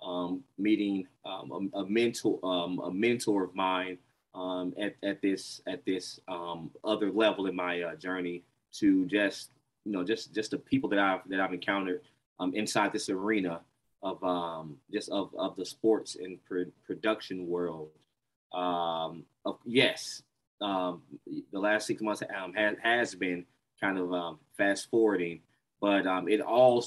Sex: male